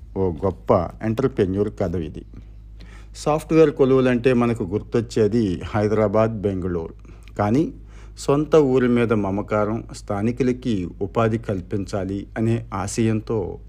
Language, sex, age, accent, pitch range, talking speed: Telugu, male, 50-69, native, 100-120 Hz, 90 wpm